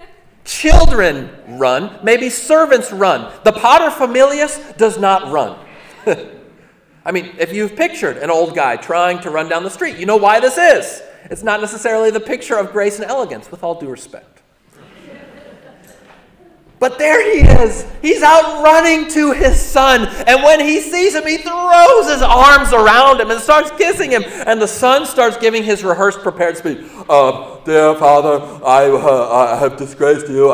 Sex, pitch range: male, 195-300 Hz